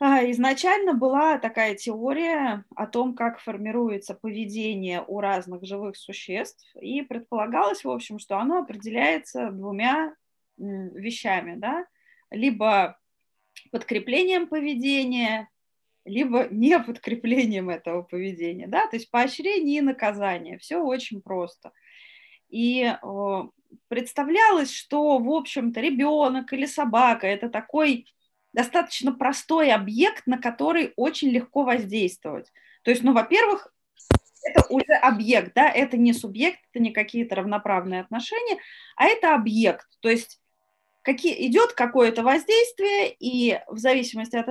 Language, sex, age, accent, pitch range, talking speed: Russian, female, 20-39, native, 220-295 Hz, 115 wpm